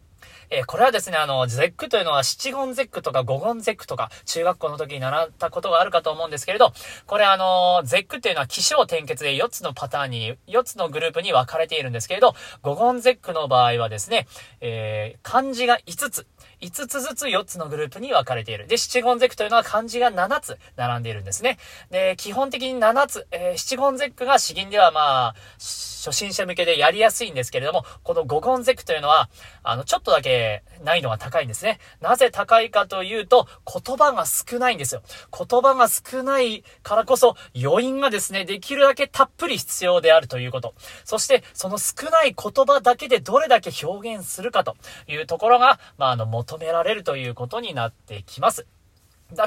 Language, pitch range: Japanese, 160-260 Hz